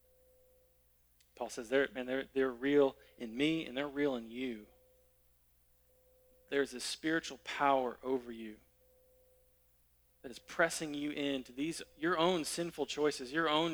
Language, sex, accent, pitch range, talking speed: English, male, American, 125-165 Hz, 130 wpm